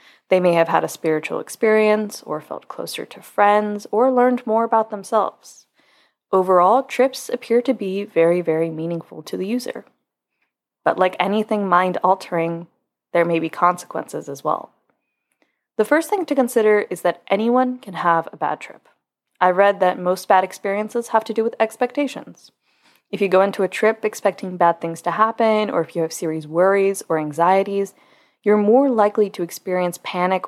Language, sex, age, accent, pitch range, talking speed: English, female, 20-39, American, 175-220 Hz, 170 wpm